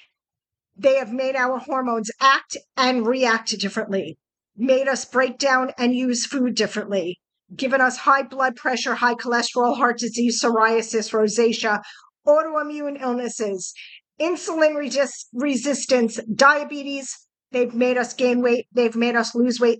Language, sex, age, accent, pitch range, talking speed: English, female, 50-69, American, 230-280 Hz, 130 wpm